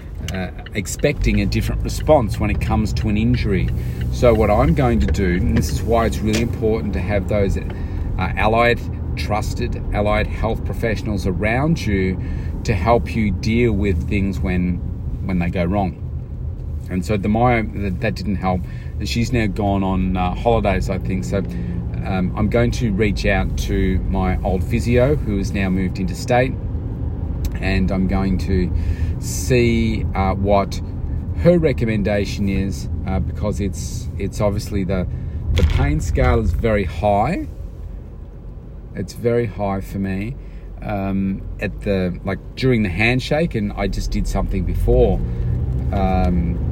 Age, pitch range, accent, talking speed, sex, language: 40-59, 85-105 Hz, Australian, 150 wpm, male, English